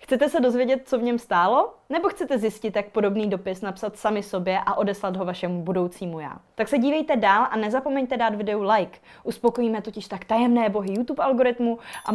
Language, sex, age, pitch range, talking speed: Czech, female, 20-39, 200-265 Hz, 195 wpm